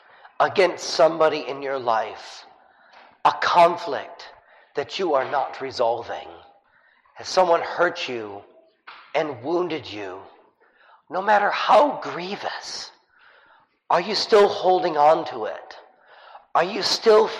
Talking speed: 115 wpm